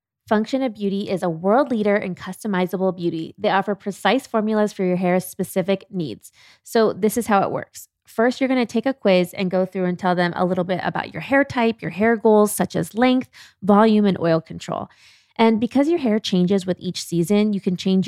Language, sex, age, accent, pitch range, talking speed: English, female, 20-39, American, 185-225 Hz, 220 wpm